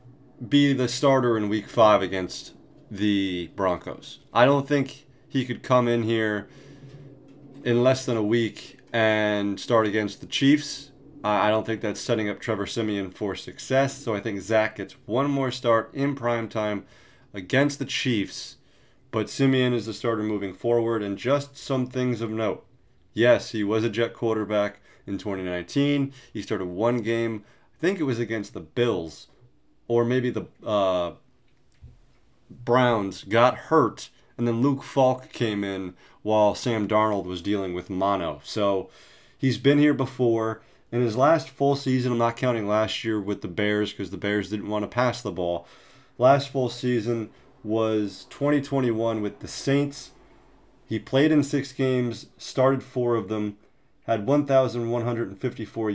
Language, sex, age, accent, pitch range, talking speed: English, male, 30-49, American, 105-130 Hz, 160 wpm